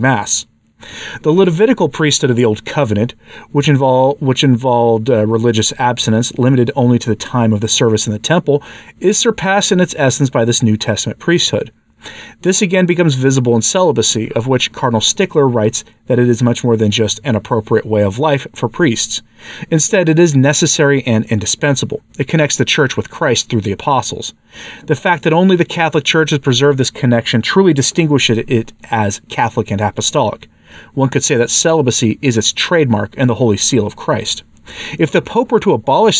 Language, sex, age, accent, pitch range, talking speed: English, male, 40-59, American, 115-150 Hz, 185 wpm